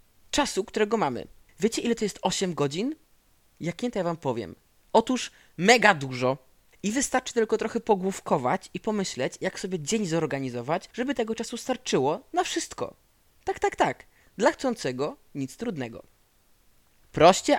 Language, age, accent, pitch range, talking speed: Polish, 20-39, native, 130-205 Hz, 145 wpm